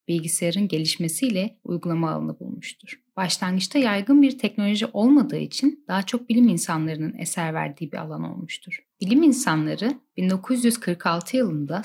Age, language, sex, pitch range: 10-29, Turkish, female, 175-235 Hz